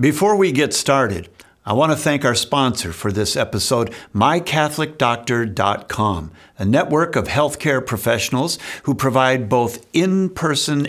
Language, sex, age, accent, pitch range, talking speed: English, male, 50-69, American, 110-145 Hz, 120 wpm